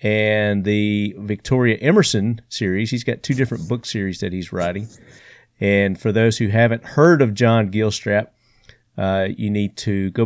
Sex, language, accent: male, English, American